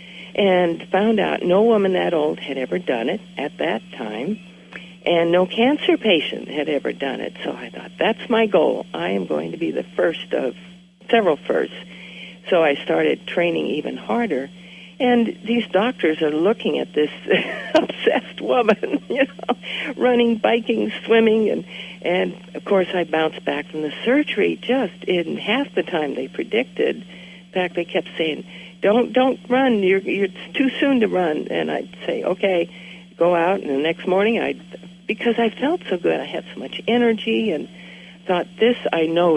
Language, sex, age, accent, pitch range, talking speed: English, female, 60-79, American, 170-215 Hz, 175 wpm